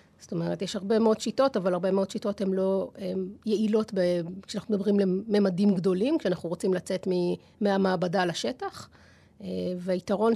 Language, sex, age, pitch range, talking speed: Hebrew, female, 30-49, 185-220 Hz, 140 wpm